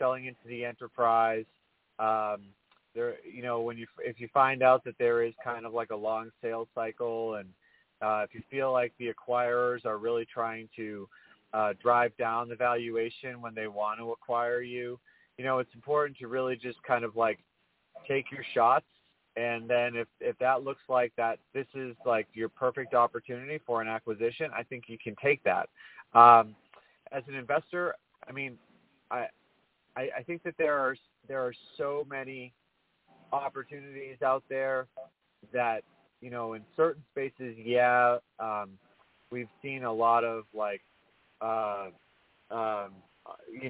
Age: 30-49